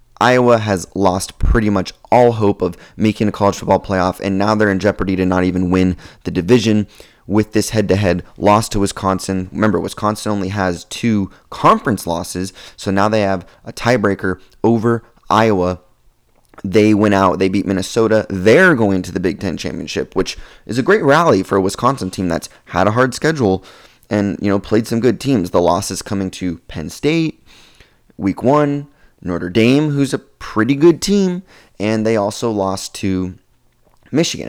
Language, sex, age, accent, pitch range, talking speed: English, male, 20-39, American, 95-115 Hz, 175 wpm